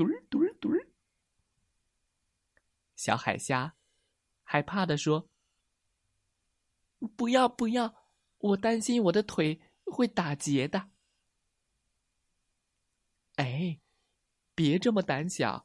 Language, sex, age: Chinese, male, 20-39